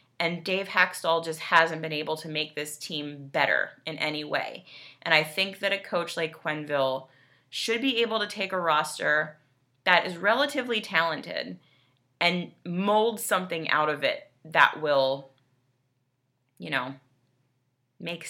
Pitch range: 135-195 Hz